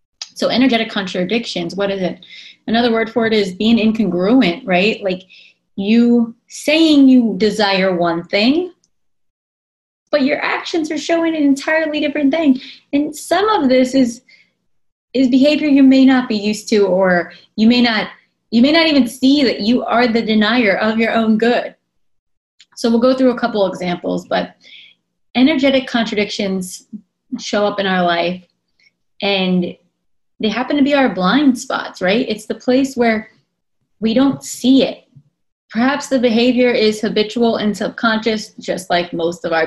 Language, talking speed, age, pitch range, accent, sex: English, 155 wpm, 20-39, 205-265 Hz, American, female